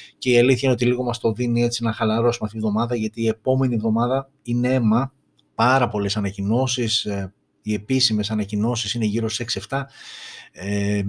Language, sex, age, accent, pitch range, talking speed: Greek, male, 30-49, native, 100-120 Hz, 170 wpm